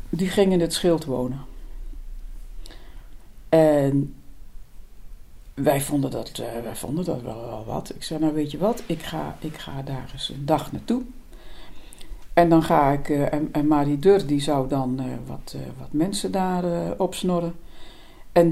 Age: 60-79